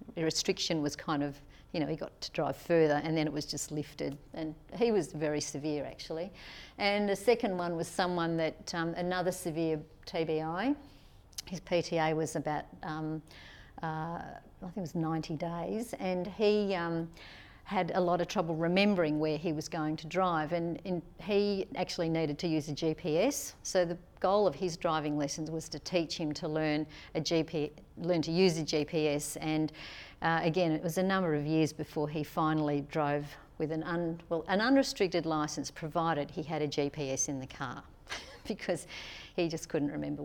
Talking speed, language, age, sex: 180 wpm, English, 50-69, female